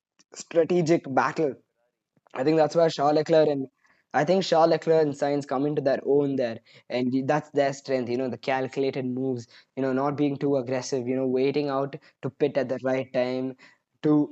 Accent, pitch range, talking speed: Indian, 125-150 Hz, 195 wpm